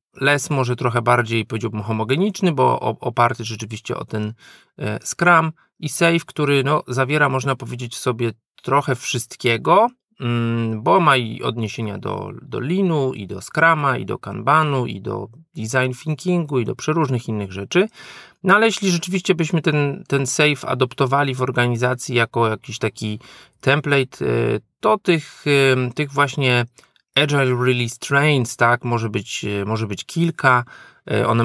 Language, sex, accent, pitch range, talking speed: Polish, male, native, 115-145 Hz, 145 wpm